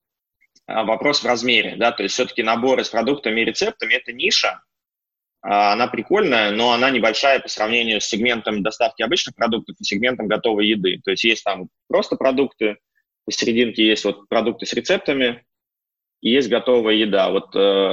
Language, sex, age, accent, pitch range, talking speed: Russian, male, 20-39, native, 100-120 Hz, 155 wpm